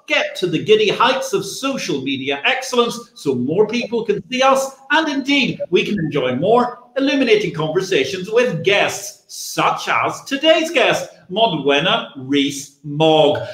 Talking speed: 135 wpm